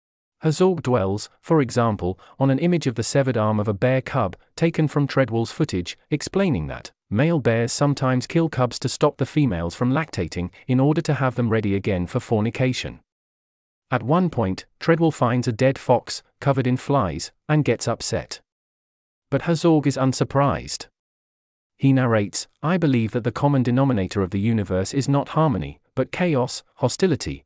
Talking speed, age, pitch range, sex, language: 165 wpm, 40-59, 105-145 Hz, male, English